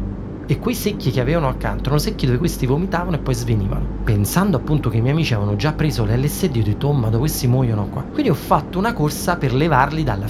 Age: 30-49